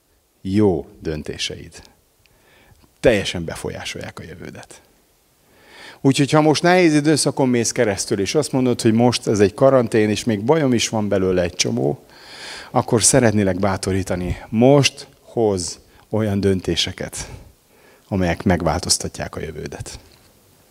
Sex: male